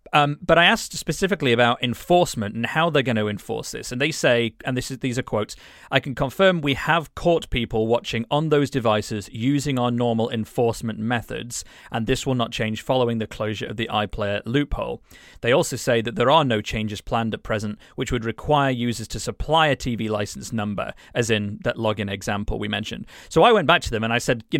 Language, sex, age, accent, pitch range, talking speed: English, male, 30-49, British, 110-135 Hz, 215 wpm